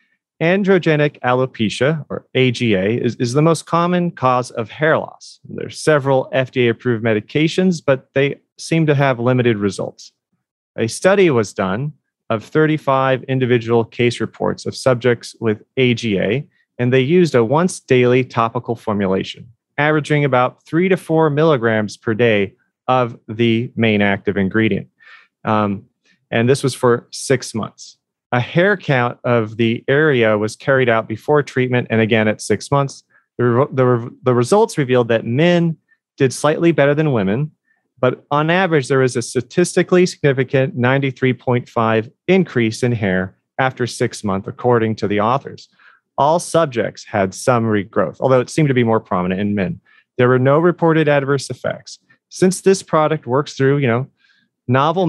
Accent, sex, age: American, male, 30-49